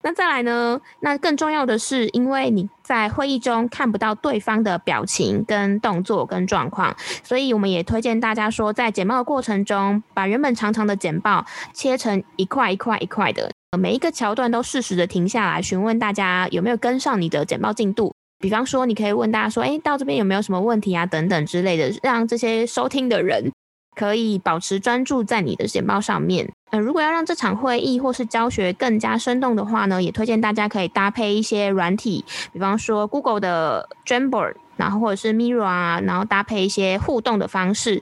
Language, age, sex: Chinese, 20-39, female